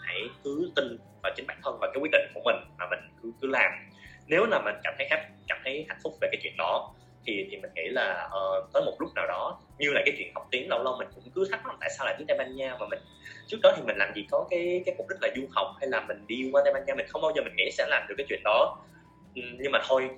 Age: 20-39